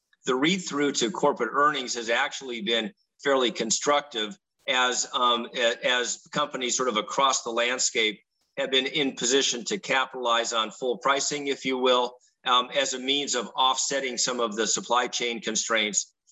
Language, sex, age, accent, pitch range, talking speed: English, male, 50-69, American, 120-140 Hz, 160 wpm